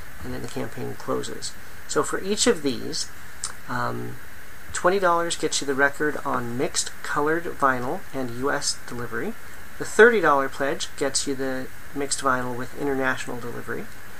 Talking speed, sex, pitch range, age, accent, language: 145 wpm, male, 130-155 Hz, 40-59, American, English